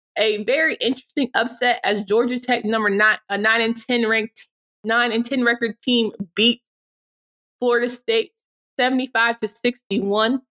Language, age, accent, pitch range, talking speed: English, 20-39, American, 210-240 Hz, 140 wpm